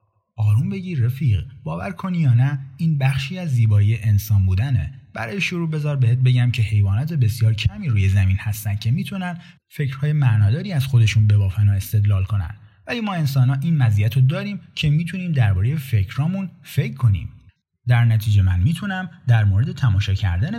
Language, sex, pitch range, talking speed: Persian, male, 105-145 Hz, 165 wpm